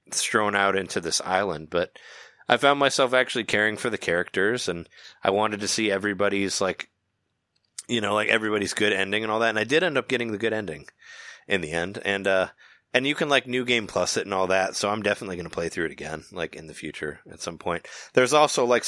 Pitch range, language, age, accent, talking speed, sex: 95-120 Hz, English, 20-39, American, 235 wpm, male